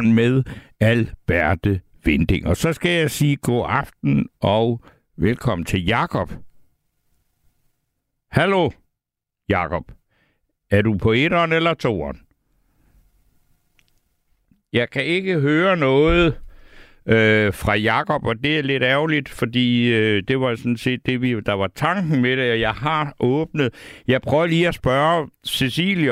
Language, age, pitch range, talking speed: Danish, 60-79, 100-140 Hz, 135 wpm